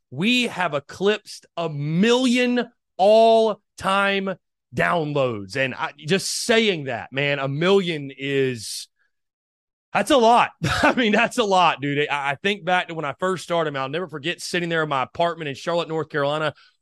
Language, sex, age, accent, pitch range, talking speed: English, male, 30-49, American, 135-175 Hz, 170 wpm